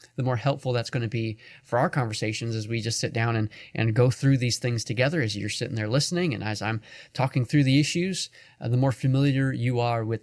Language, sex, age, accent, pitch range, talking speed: English, male, 20-39, American, 115-140 Hz, 240 wpm